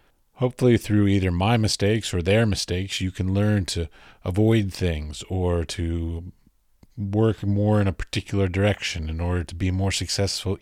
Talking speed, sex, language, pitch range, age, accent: 160 wpm, male, English, 90-110 Hz, 30-49, American